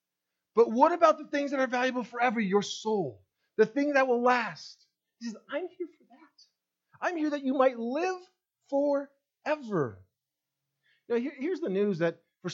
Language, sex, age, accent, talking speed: English, male, 40-59, American, 165 wpm